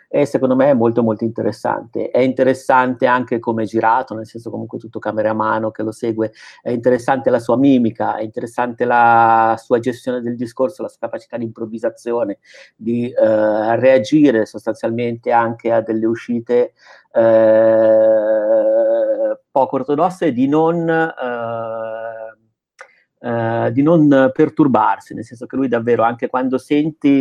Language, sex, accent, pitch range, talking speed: Italian, male, native, 110-130 Hz, 145 wpm